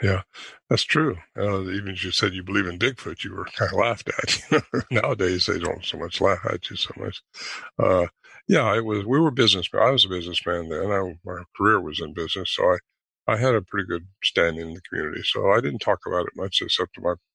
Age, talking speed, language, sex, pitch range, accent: 60-79, 230 wpm, English, male, 90-105 Hz, American